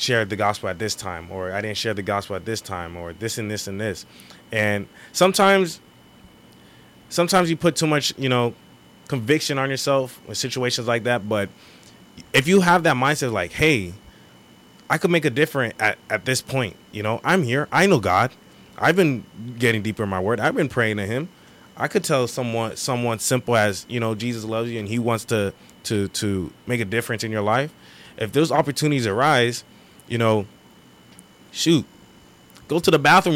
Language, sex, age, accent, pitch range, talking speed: English, male, 20-39, American, 105-140 Hz, 195 wpm